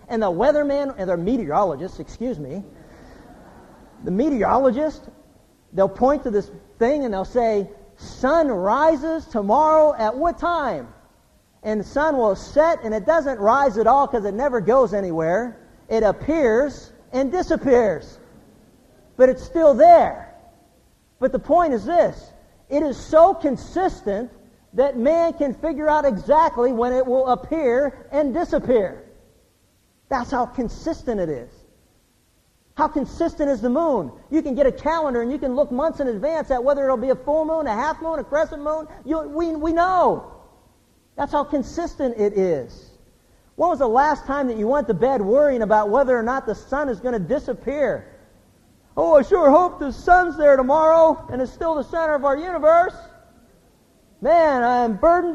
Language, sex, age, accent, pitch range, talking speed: English, male, 50-69, American, 245-315 Hz, 165 wpm